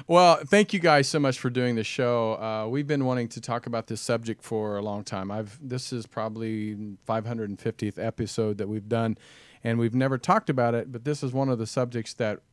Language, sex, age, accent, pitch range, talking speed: English, male, 40-59, American, 110-130 Hz, 220 wpm